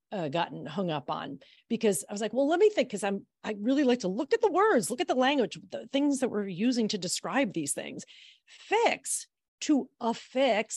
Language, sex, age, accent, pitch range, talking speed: English, female, 40-59, American, 195-265 Hz, 215 wpm